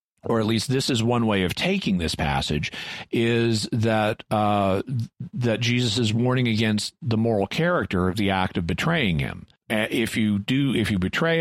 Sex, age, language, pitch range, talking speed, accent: male, 50-69, English, 100-120 Hz, 180 wpm, American